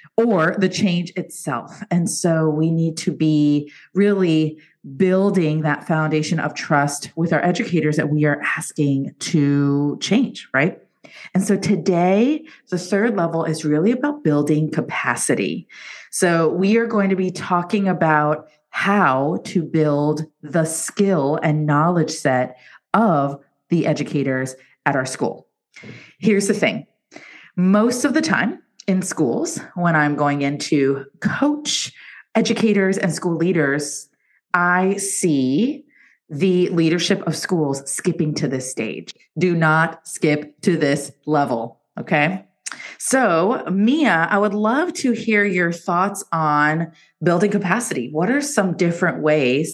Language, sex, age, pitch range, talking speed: English, female, 30-49, 150-195 Hz, 135 wpm